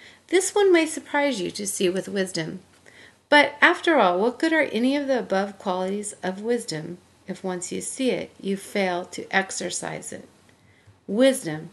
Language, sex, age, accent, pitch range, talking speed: English, female, 40-59, American, 180-245 Hz, 170 wpm